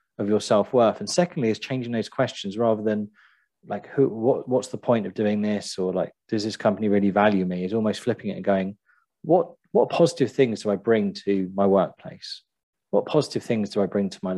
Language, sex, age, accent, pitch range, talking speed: English, male, 30-49, British, 100-125 Hz, 215 wpm